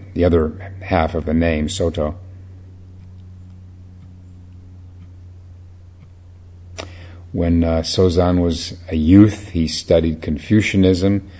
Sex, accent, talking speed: male, American, 85 wpm